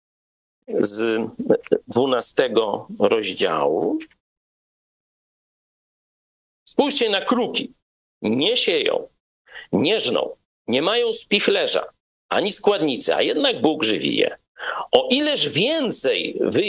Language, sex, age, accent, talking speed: Polish, male, 50-69, native, 85 wpm